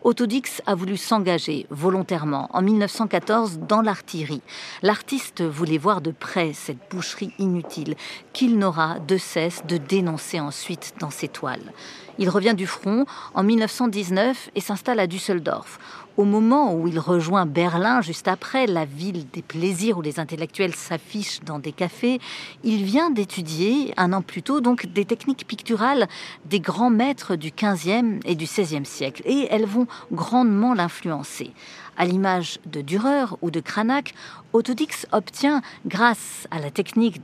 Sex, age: female, 40-59